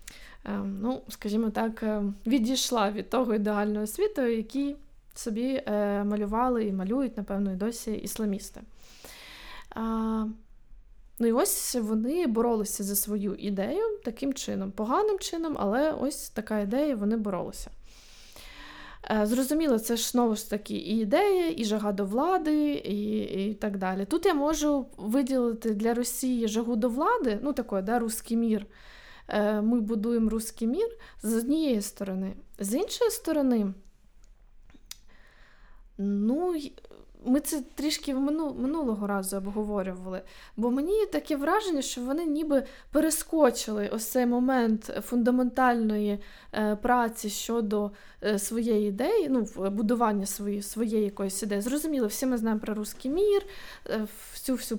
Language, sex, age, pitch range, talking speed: Ukrainian, female, 20-39, 210-270 Hz, 125 wpm